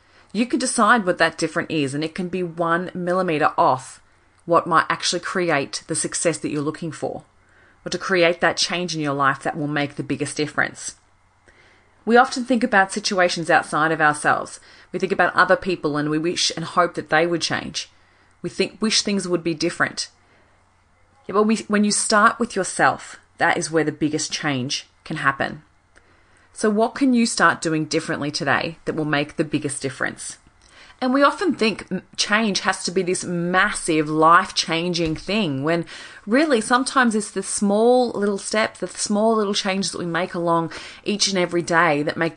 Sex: female